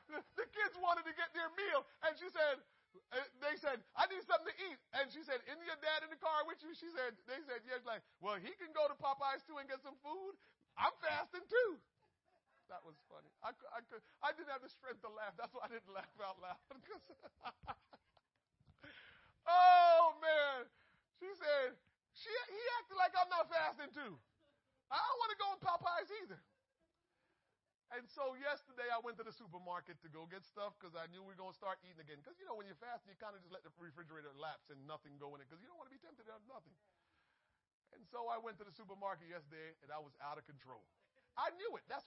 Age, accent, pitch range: 40-59, American, 190-320 Hz